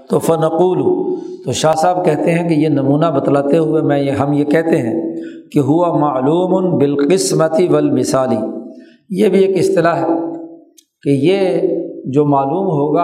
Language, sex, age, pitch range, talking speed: Urdu, male, 50-69, 145-195 Hz, 150 wpm